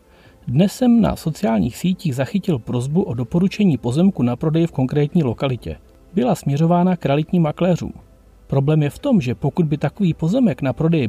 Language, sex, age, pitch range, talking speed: Czech, male, 40-59, 130-180 Hz, 170 wpm